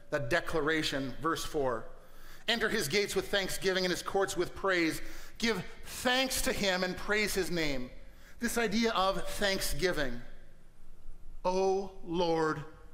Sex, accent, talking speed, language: male, American, 130 wpm, English